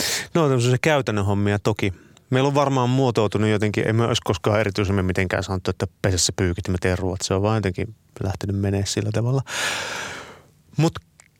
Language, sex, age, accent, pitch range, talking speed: Finnish, male, 30-49, native, 100-120 Hz, 165 wpm